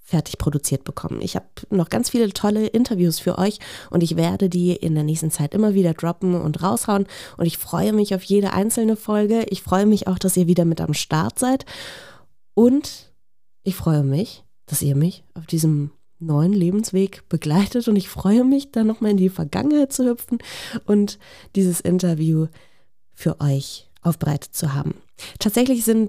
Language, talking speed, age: German, 175 wpm, 20-39